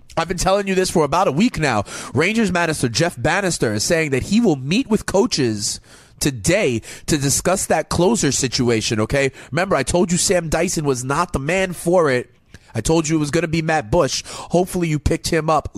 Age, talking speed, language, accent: 30-49, 215 wpm, English, American